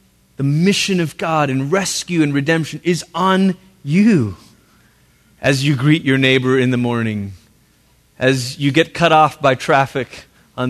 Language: English